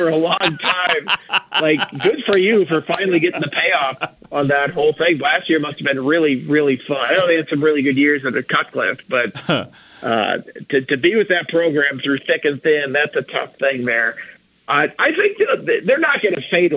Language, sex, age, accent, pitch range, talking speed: English, male, 50-69, American, 130-165 Hz, 220 wpm